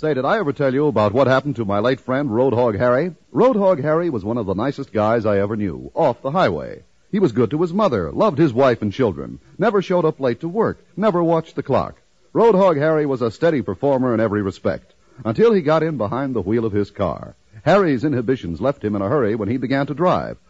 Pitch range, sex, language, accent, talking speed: 105-170 Hz, male, English, American, 235 wpm